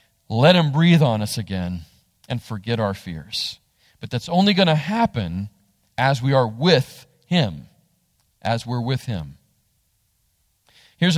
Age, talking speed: 40-59, 140 wpm